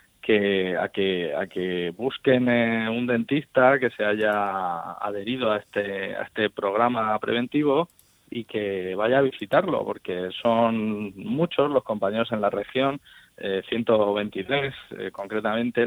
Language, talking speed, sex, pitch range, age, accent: Spanish, 130 wpm, male, 100-120 Hz, 20-39, Spanish